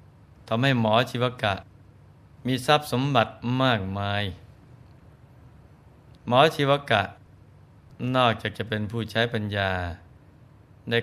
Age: 20-39